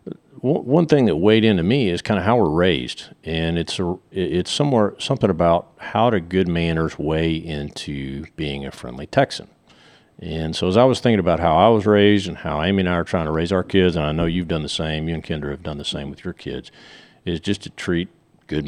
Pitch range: 80-95 Hz